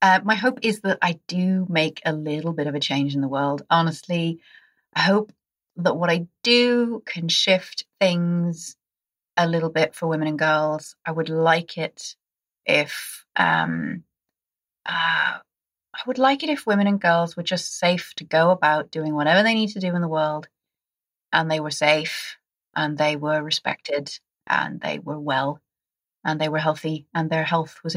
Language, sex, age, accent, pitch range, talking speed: English, female, 30-49, British, 160-220 Hz, 180 wpm